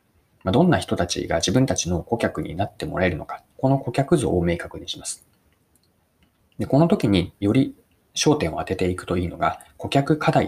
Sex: male